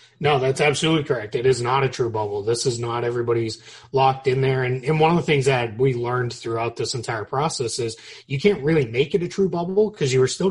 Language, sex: English, male